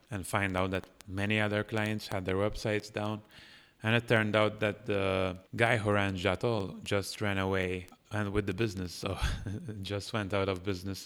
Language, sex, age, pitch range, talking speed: English, male, 30-49, 95-110 Hz, 185 wpm